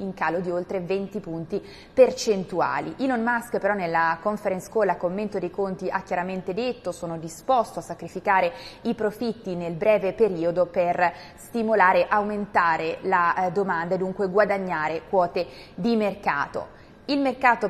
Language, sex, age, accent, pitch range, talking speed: Italian, female, 20-39, native, 175-210 Hz, 140 wpm